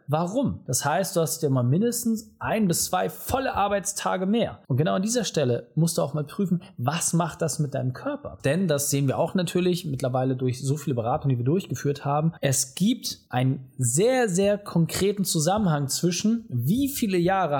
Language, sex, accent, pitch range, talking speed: German, male, German, 135-195 Hz, 190 wpm